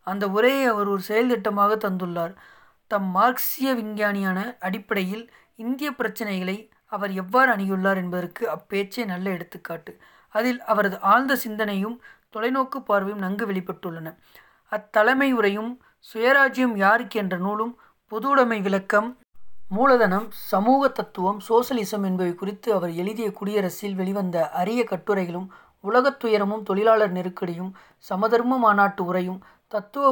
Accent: native